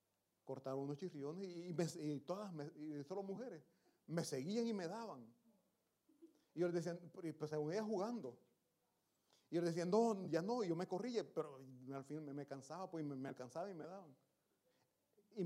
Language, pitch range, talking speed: Italian, 145-185 Hz, 185 wpm